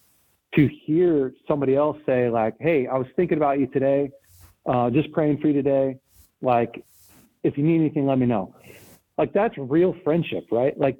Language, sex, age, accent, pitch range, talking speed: English, male, 40-59, American, 120-150 Hz, 180 wpm